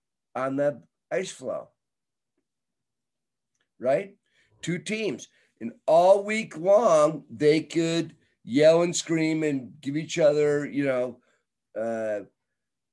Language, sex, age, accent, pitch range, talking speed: English, male, 50-69, American, 140-175 Hz, 105 wpm